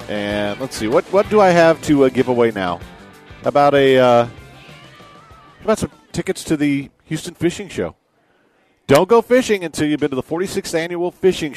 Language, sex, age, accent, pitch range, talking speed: English, male, 50-69, American, 110-155 Hz, 180 wpm